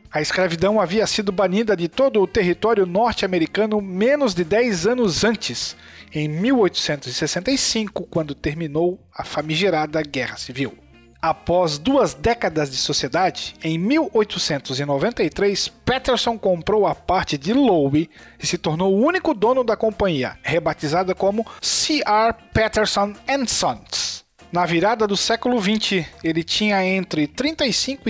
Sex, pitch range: male, 155-225 Hz